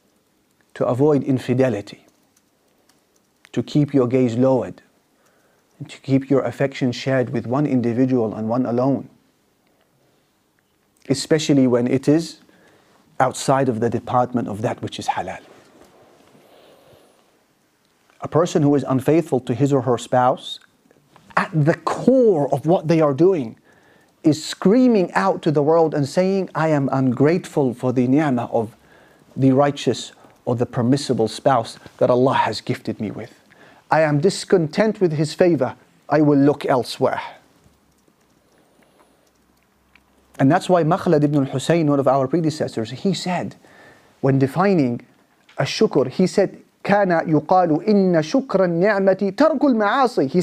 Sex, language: male, English